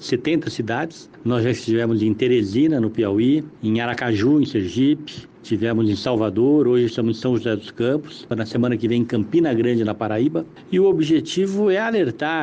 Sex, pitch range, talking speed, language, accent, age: male, 110-145 Hz, 180 wpm, Portuguese, Brazilian, 60-79